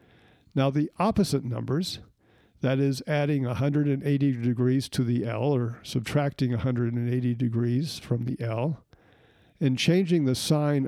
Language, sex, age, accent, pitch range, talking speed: English, male, 50-69, American, 125-155 Hz, 125 wpm